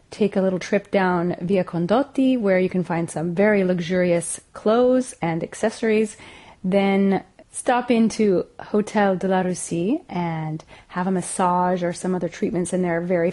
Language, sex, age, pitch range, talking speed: English, female, 30-49, 180-220 Hz, 160 wpm